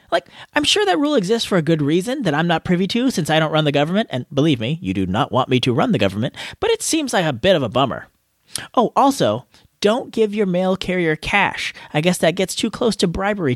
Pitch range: 150-230 Hz